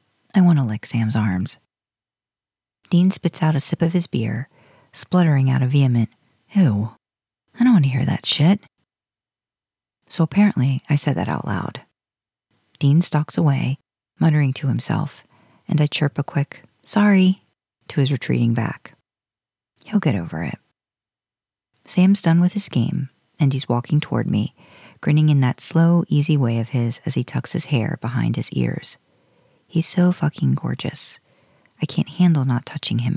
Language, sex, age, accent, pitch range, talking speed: English, female, 40-59, American, 120-165 Hz, 160 wpm